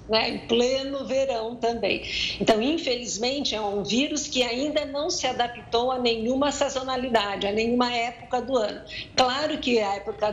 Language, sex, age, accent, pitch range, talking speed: Portuguese, female, 50-69, Brazilian, 215-250 Hz, 155 wpm